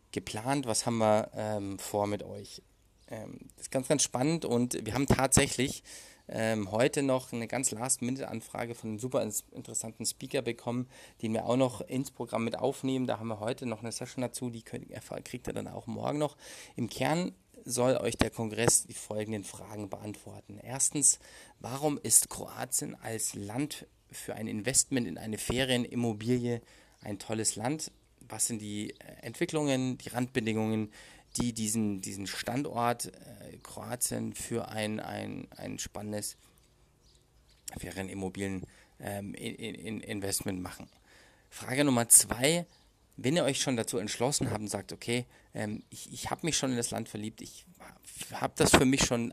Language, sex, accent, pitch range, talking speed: English, male, German, 105-125 Hz, 160 wpm